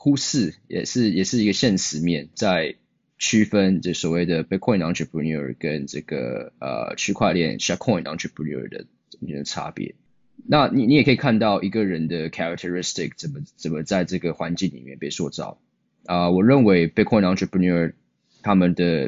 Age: 20-39